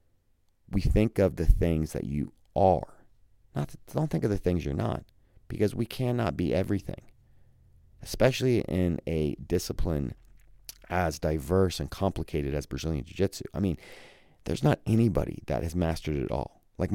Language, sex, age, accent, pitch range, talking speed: English, male, 30-49, American, 80-105 Hz, 150 wpm